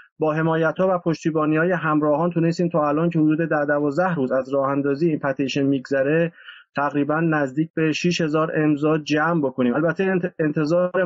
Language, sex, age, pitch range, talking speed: Persian, male, 30-49, 140-165 Hz, 170 wpm